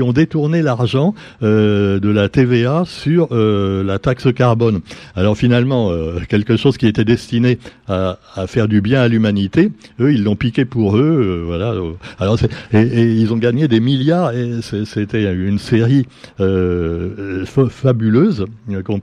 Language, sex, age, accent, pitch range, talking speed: French, male, 60-79, French, 105-135 Hz, 160 wpm